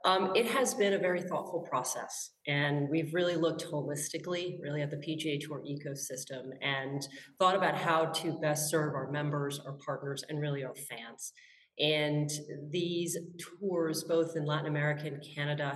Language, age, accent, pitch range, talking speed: English, 30-49, American, 140-155 Hz, 165 wpm